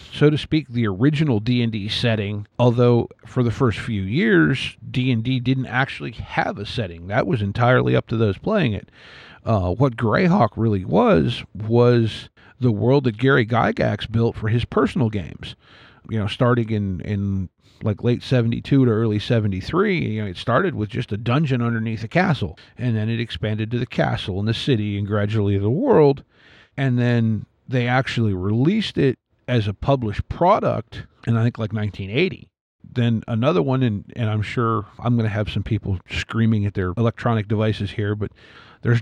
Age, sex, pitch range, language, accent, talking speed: 40-59, male, 105-125 Hz, English, American, 175 wpm